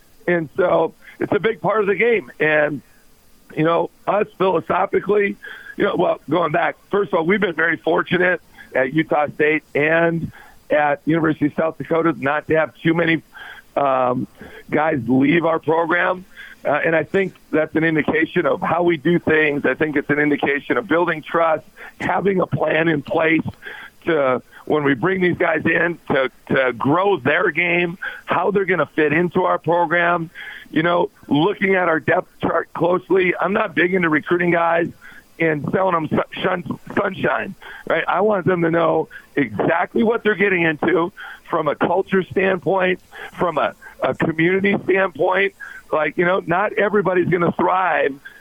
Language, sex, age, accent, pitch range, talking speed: English, male, 50-69, American, 155-190 Hz, 165 wpm